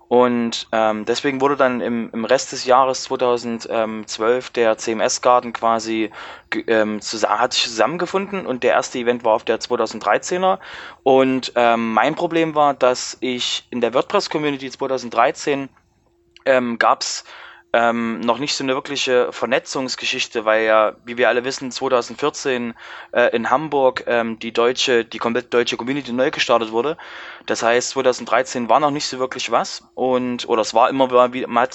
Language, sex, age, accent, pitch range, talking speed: German, male, 20-39, German, 115-140 Hz, 160 wpm